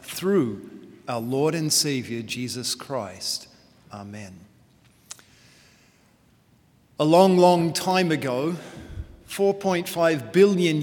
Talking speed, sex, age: 85 wpm, male, 40-59